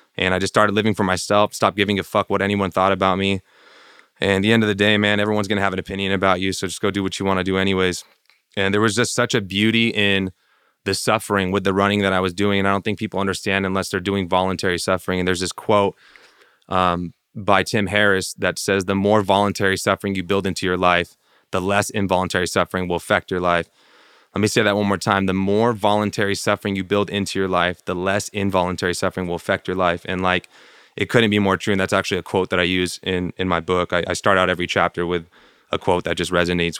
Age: 20-39